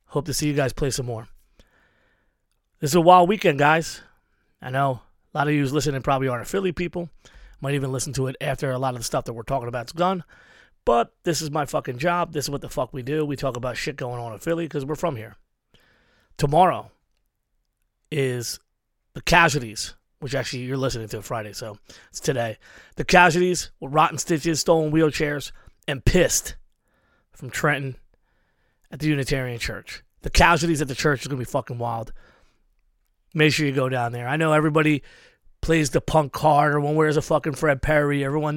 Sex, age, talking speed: male, 30-49, 200 wpm